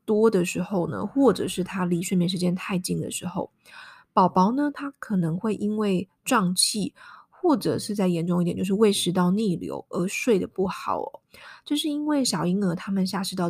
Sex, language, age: female, Chinese, 20-39